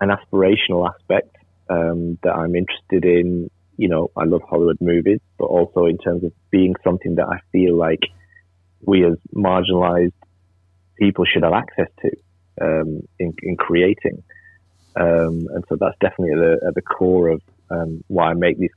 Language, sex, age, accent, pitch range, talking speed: English, male, 30-49, British, 85-95 Hz, 165 wpm